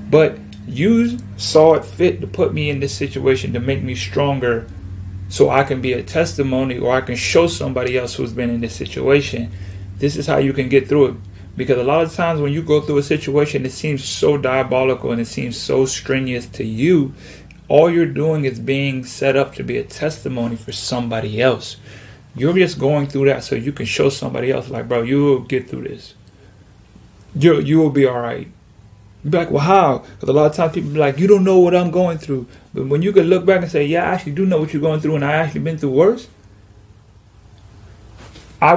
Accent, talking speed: American, 220 wpm